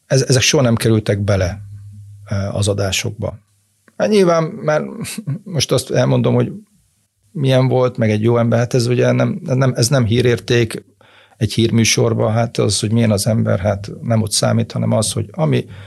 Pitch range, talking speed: 105-120 Hz, 170 wpm